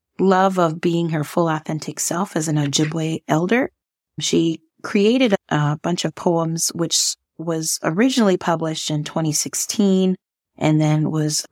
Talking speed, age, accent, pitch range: 135 wpm, 30-49, American, 155-180 Hz